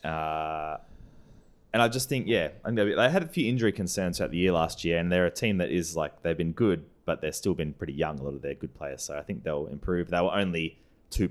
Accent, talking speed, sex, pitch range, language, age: Australian, 255 wpm, male, 75-105 Hz, English, 20-39